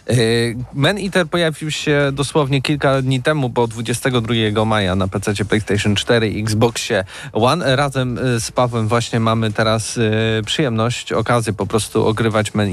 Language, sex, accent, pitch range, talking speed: Polish, male, native, 110-130 Hz, 140 wpm